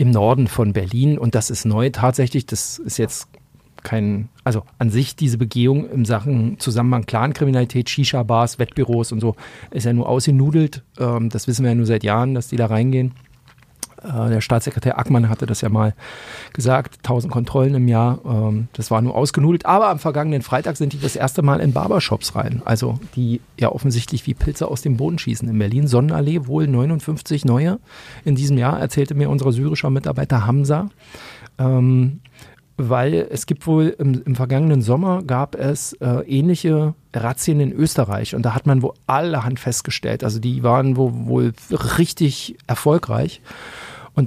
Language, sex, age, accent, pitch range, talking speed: German, male, 40-59, German, 120-145 Hz, 170 wpm